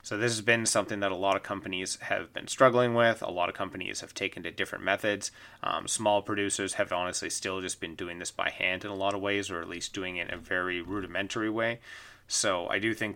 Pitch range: 95-110 Hz